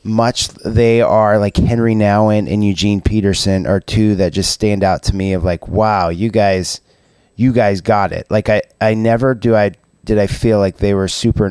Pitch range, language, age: 95-115 Hz, English, 30-49